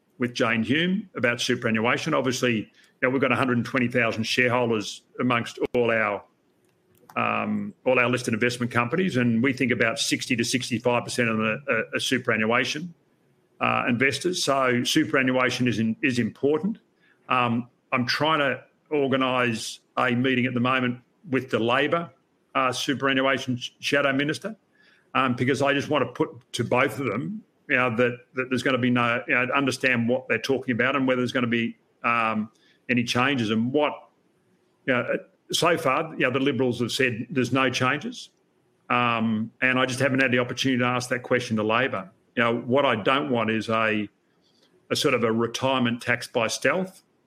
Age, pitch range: 50-69, 120-135 Hz